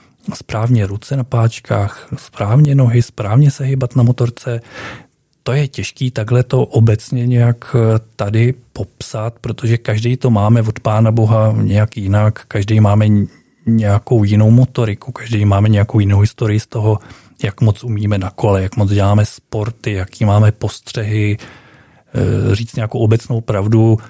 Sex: male